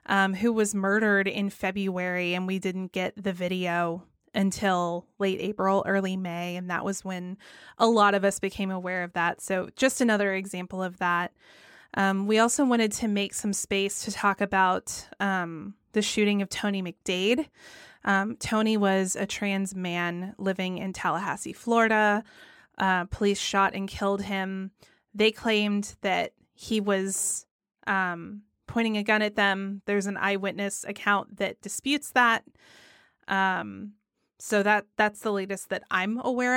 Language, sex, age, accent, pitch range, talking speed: English, female, 20-39, American, 185-210 Hz, 155 wpm